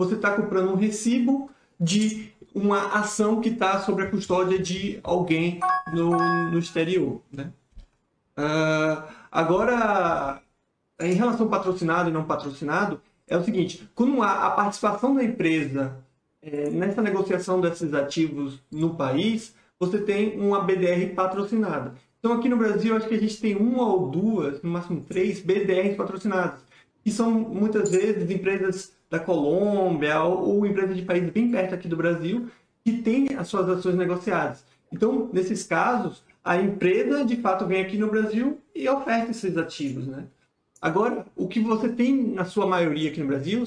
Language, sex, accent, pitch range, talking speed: Portuguese, male, Brazilian, 170-220 Hz, 160 wpm